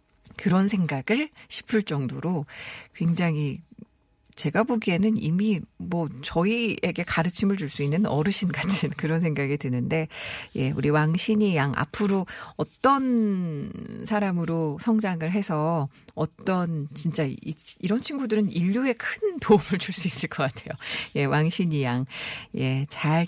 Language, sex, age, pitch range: Korean, female, 50-69, 150-210 Hz